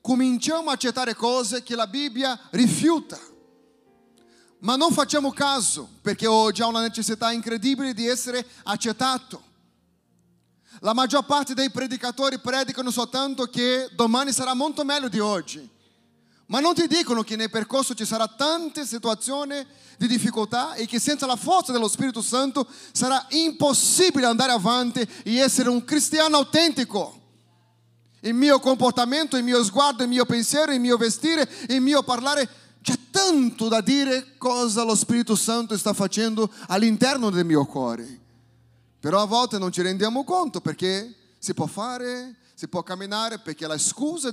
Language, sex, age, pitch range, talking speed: Italian, male, 30-49, 210-265 Hz, 150 wpm